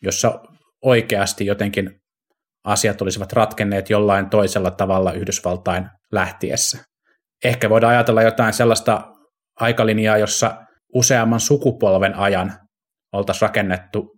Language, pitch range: Finnish, 100-115 Hz